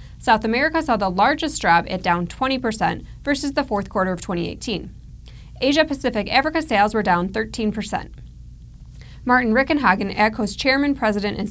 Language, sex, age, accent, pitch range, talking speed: English, female, 20-39, American, 190-260 Hz, 140 wpm